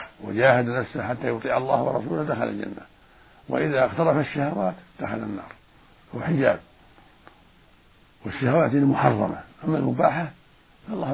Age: 60-79